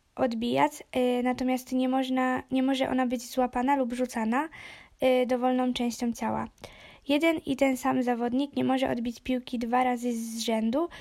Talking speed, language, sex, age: 135 wpm, Polish, female, 20-39